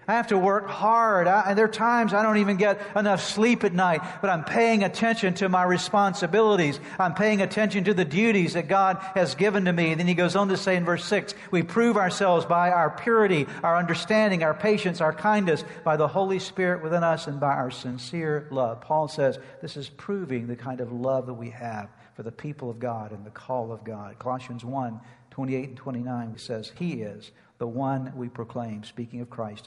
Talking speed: 215 wpm